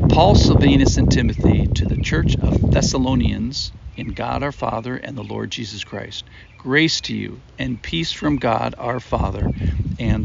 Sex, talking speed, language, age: male, 165 wpm, English, 60-79